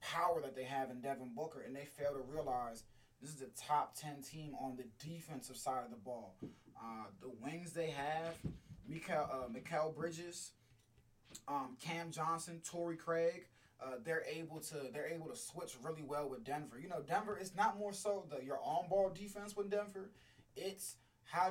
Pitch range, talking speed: 125-165 Hz, 175 wpm